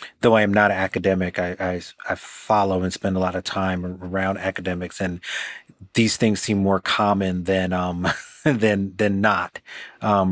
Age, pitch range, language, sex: 30-49, 95-105 Hz, English, male